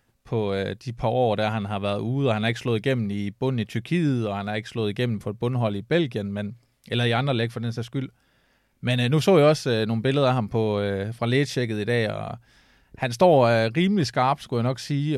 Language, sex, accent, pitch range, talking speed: Danish, male, native, 110-130 Hz, 235 wpm